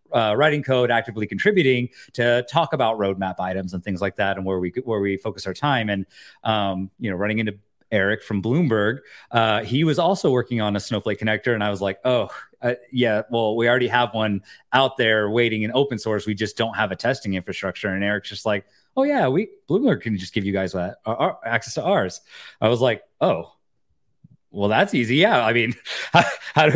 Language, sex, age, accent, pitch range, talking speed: English, male, 30-49, American, 105-125 Hz, 215 wpm